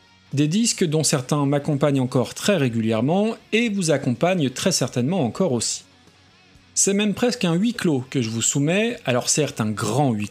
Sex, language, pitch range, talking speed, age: male, French, 125-195 Hz, 175 wpm, 40-59